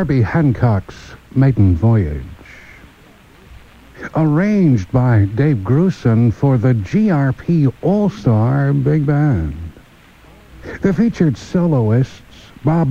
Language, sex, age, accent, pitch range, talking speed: English, male, 60-79, American, 115-155 Hz, 85 wpm